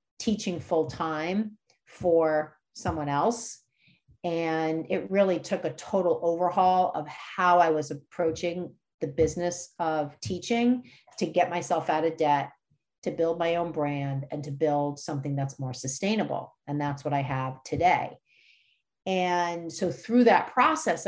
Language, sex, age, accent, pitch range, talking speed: English, female, 40-59, American, 150-190 Hz, 145 wpm